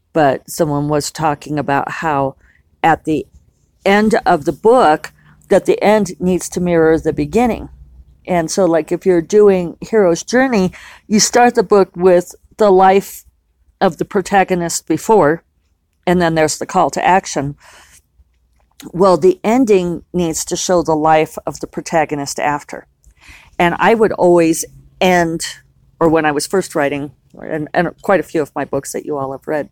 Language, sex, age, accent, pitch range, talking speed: English, female, 50-69, American, 145-190 Hz, 165 wpm